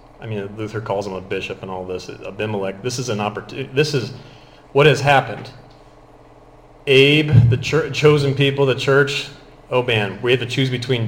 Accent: American